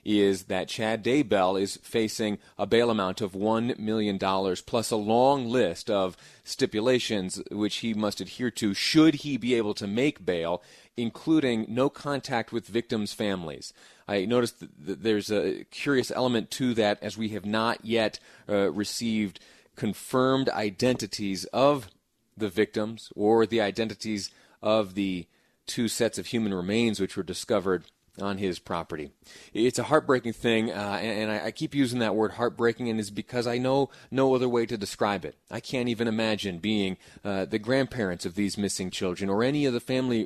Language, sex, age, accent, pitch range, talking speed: English, male, 30-49, American, 105-125 Hz, 170 wpm